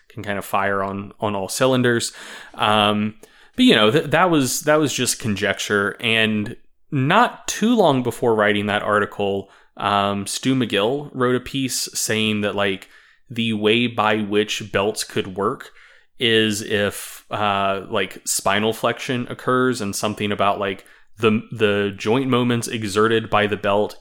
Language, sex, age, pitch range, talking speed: English, male, 20-39, 100-125 Hz, 155 wpm